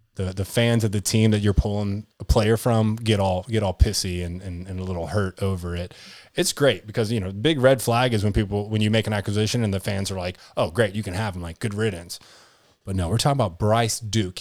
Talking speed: 260 wpm